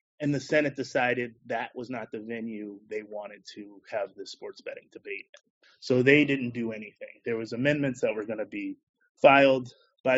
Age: 30-49